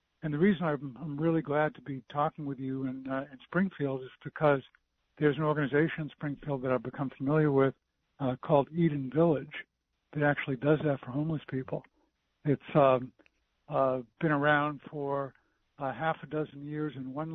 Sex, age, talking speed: male, 60-79, 175 wpm